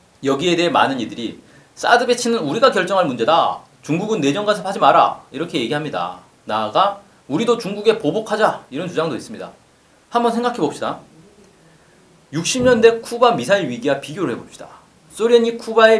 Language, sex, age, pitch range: Korean, male, 40-59, 170-230 Hz